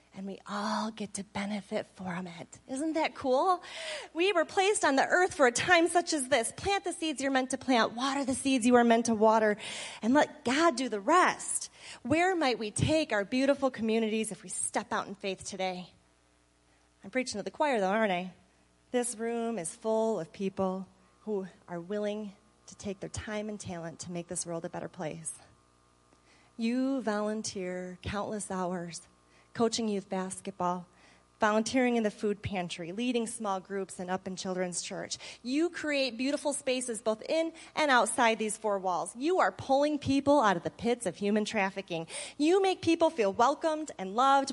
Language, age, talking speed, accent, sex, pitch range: English, 30-49, 185 wpm, American, female, 185-265 Hz